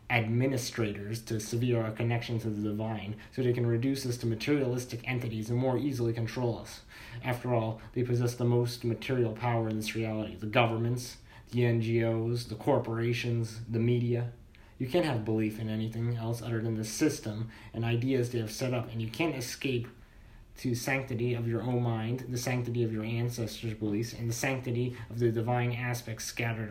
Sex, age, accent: male, 30-49, American